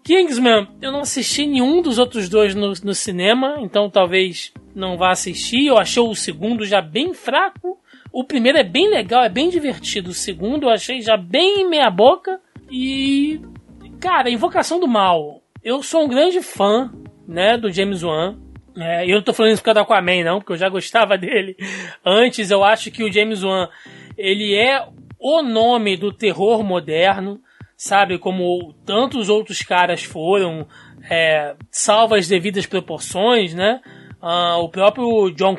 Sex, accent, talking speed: male, Brazilian, 170 wpm